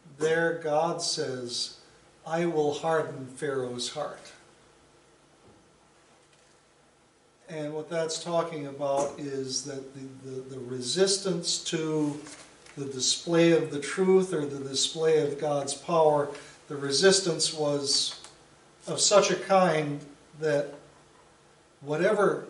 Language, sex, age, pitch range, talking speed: English, male, 60-79, 140-170 Hz, 105 wpm